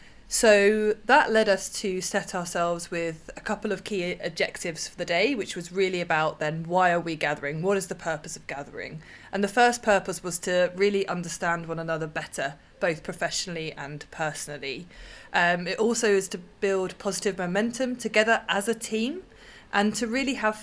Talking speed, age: 180 wpm, 20-39